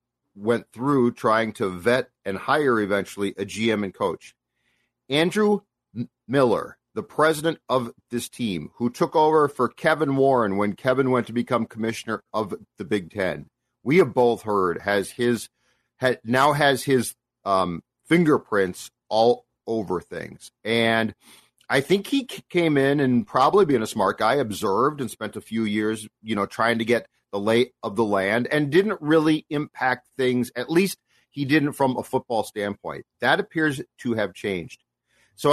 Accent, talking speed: American, 165 wpm